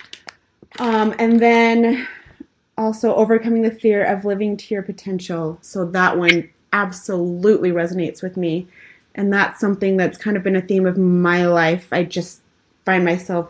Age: 30-49